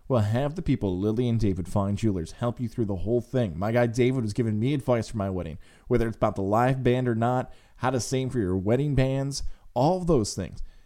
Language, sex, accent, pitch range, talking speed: English, male, American, 100-125 Hz, 240 wpm